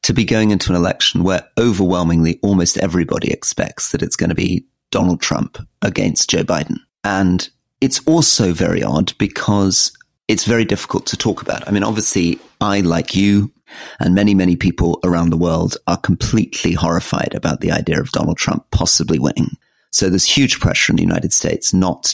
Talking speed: 180 wpm